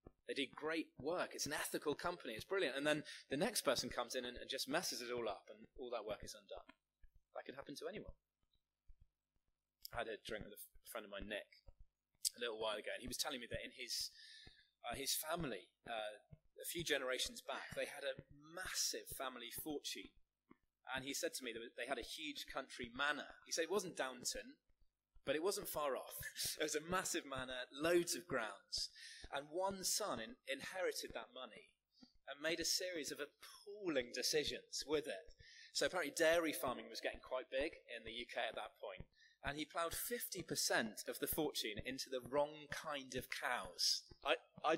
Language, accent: English, British